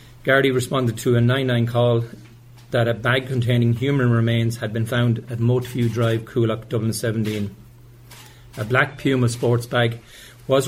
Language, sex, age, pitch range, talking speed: English, male, 40-59, 115-125 Hz, 150 wpm